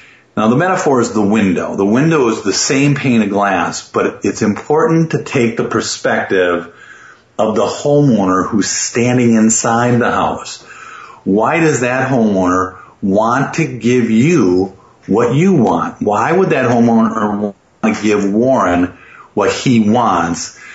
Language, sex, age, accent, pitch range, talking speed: English, male, 50-69, American, 100-140 Hz, 150 wpm